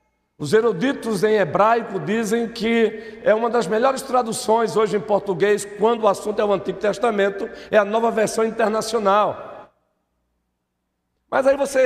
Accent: Brazilian